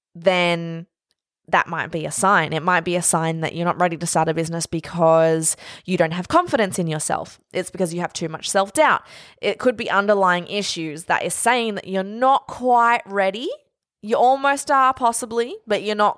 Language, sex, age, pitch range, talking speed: English, female, 20-39, 170-210 Hz, 195 wpm